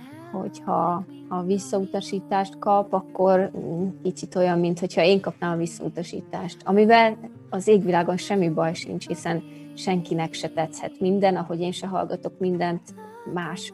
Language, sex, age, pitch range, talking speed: Hungarian, female, 30-49, 180-210 Hz, 130 wpm